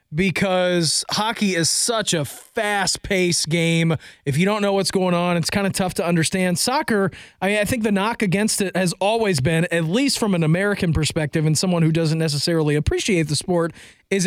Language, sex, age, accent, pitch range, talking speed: English, male, 30-49, American, 165-205 Hz, 200 wpm